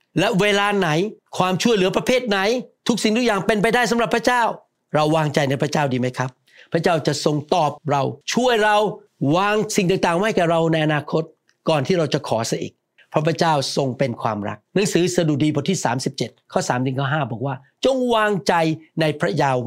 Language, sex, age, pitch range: Thai, male, 60-79, 135-180 Hz